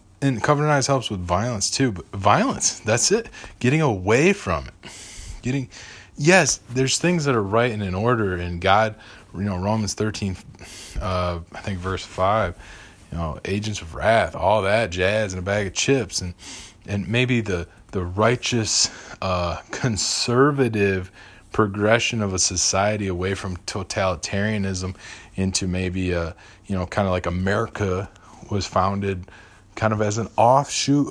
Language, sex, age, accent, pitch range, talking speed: English, male, 20-39, American, 95-130 Hz, 155 wpm